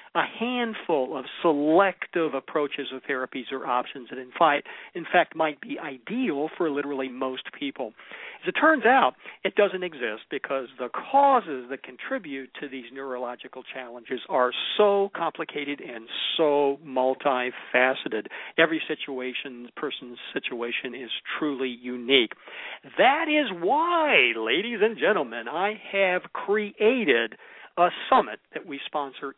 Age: 50-69